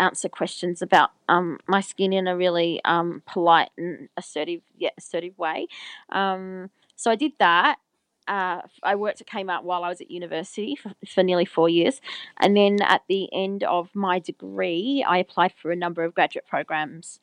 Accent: Australian